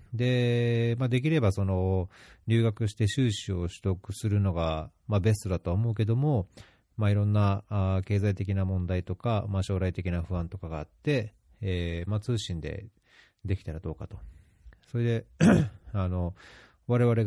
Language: Japanese